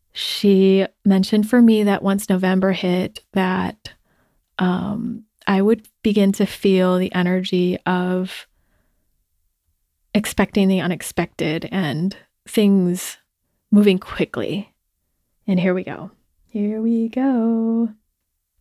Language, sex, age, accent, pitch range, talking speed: English, female, 20-39, American, 180-210 Hz, 105 wpm